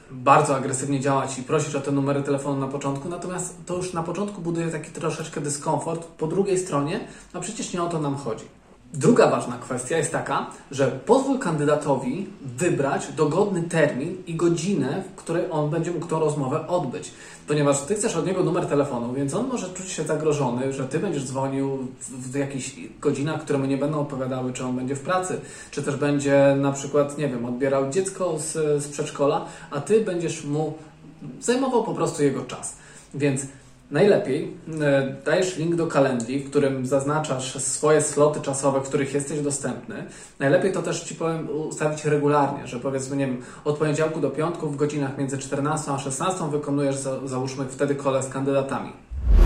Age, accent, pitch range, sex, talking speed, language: 20-39, native, 140-165 Hz, male, 175 wpm, Polish